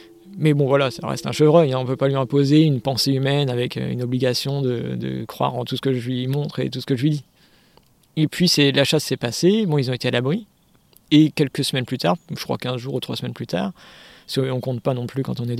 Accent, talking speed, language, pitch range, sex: French, 280 wpm, French, 135-165 Hz, male